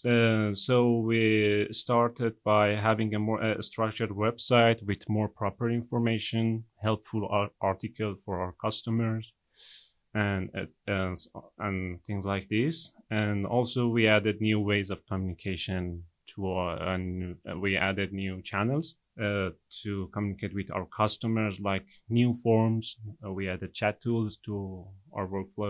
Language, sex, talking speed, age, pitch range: English, male, 135 wpm, 30-49, 95-115 Hz